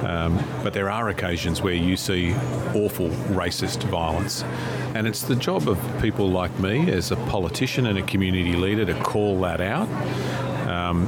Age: 40-59